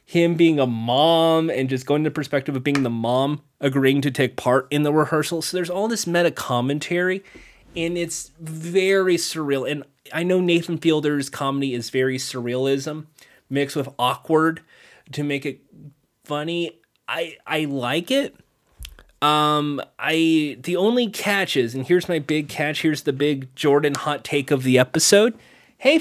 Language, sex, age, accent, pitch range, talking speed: English, male, 30-49, American, 130-170 Hz, 165 wpm